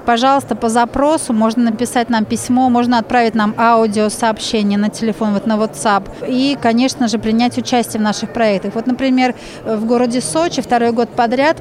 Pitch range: 220-250 Hz